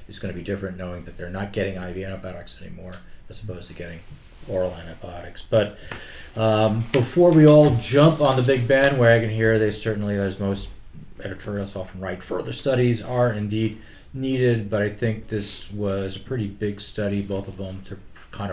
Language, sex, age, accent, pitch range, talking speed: English, male, 40-59, American, 95-125 Hz, 180 wpm